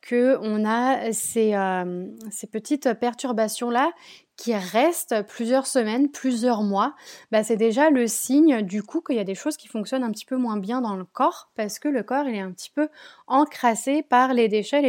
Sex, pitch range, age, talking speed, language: female, 210-270 Hz, 20-39, 185 wpm, French